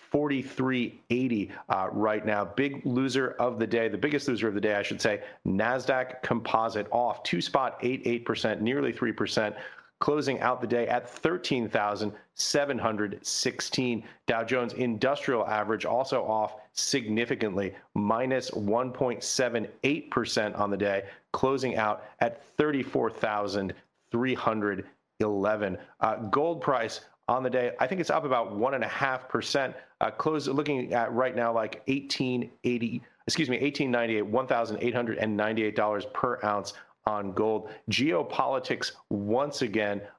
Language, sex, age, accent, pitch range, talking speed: English, male, 40-59, American, 105-130 Hz, 165 wpm